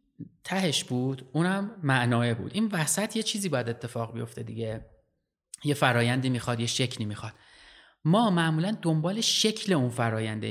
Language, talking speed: Persian, 145 wpm